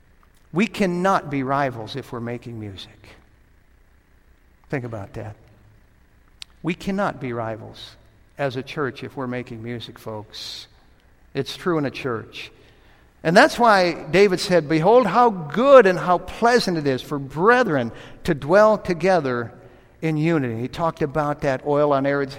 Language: English